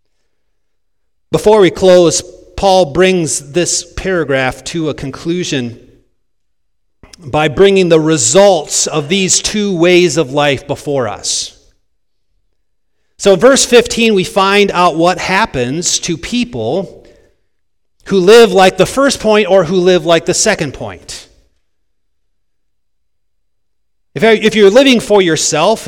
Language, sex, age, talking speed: English, male, 40-59, 115 wpm